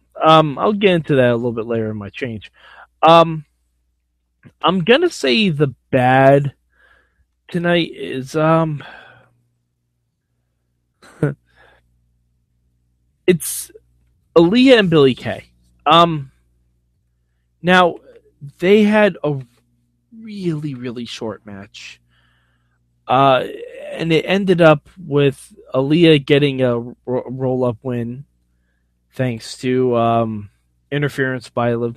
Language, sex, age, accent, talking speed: English, male, 20-39, American, 100 wpm